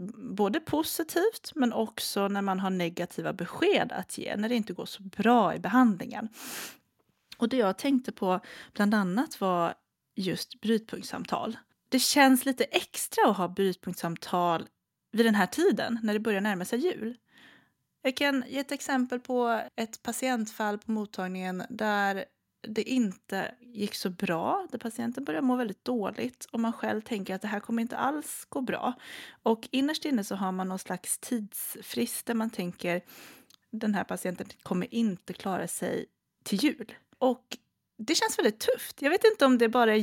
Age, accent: 30-49, native